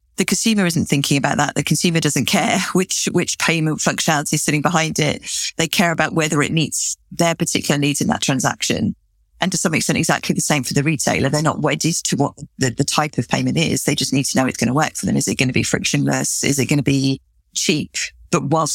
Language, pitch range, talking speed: English, 145-170 Hz, 245 wpm